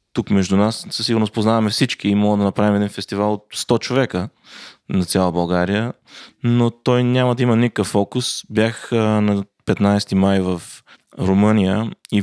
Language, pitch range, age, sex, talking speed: Bulgarian, 95-115 Hz, 20-39, male, 155 wpm